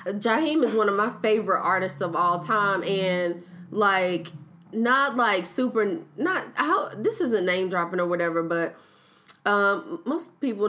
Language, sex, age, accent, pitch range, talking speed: English, female, 20-39, American, 185-245 Hz, 150 wpm